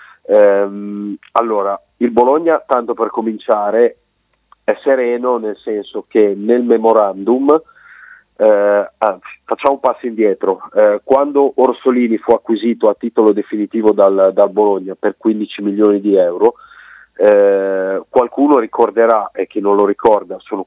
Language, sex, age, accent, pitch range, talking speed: Italian, male, 40-59, native, 105-130 Hz, 125 wpm